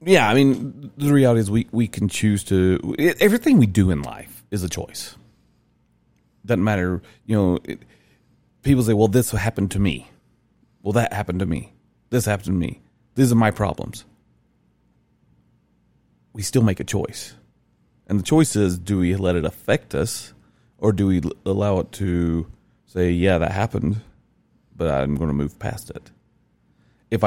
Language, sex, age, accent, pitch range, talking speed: English, male, 30-49, American, 80-110 Hz, 170 wpm